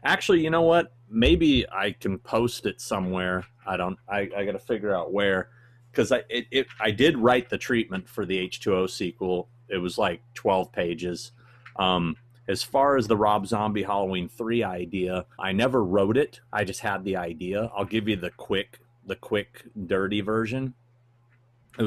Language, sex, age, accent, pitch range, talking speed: English, male, 30-49, American, 90-115 Hz, 180 wpm